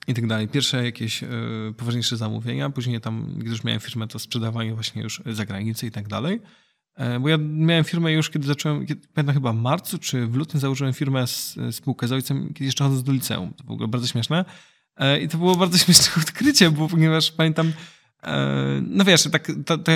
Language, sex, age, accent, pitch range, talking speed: Polish, male, 20-39, native, 120-155 Hz, 195 wpm